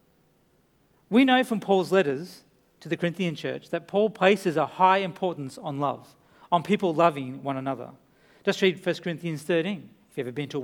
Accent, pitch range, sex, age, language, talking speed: Australian, 175-235 Hz, male, 40-59, English, 185 wpm